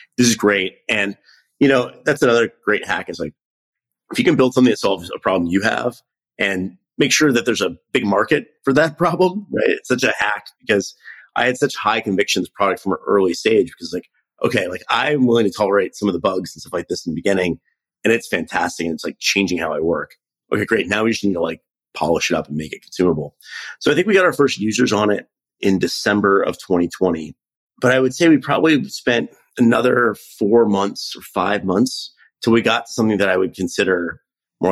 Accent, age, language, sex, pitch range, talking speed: American, 30-49, English, male, 100-140 Hz, 225 wpm